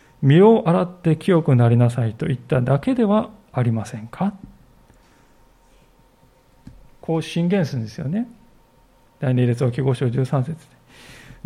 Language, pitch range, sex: Japanese, 135-190 Hz, male